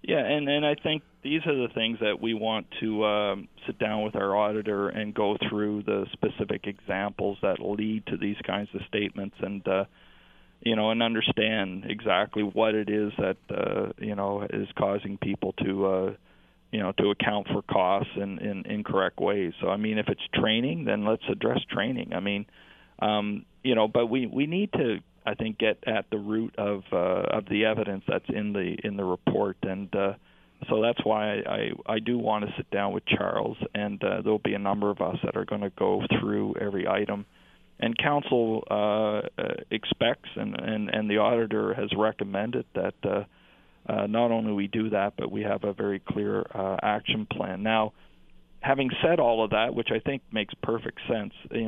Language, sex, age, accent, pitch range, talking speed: English, male, 40-59, American, 100-110 Hz, 195 wpm